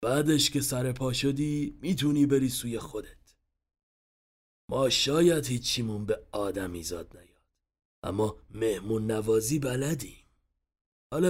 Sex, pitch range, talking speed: male, 105-135 Hz, 110 wpm